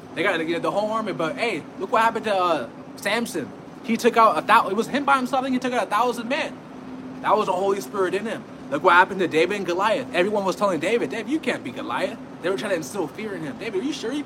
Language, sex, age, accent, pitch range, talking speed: English, male, 20-39, American, 195-260 Hz, 295 wpm